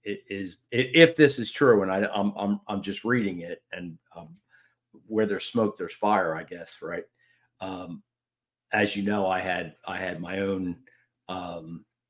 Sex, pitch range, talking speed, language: male, 95-125 Hz, 170 wpm, English